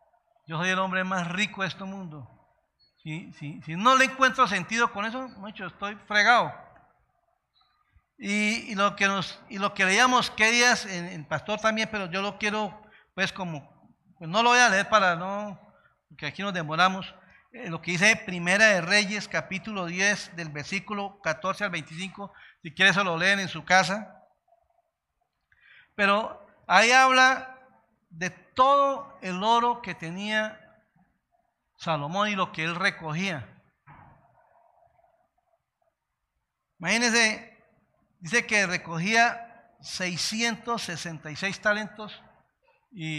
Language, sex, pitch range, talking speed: Spanish, male, 180-225 Hz, 130 wpm